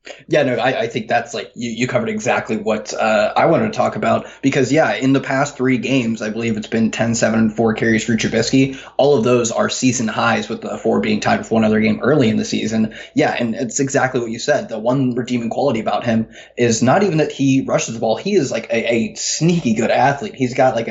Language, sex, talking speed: English, male, 245 wpm